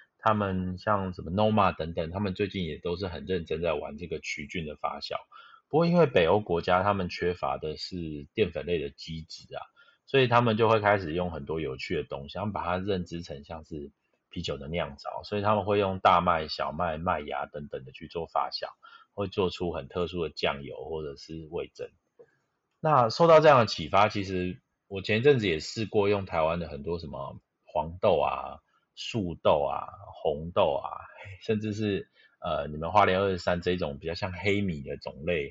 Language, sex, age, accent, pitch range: Chinese, male, 30-49, native, 85-115 Hz